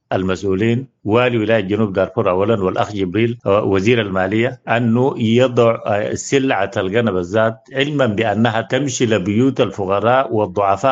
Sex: male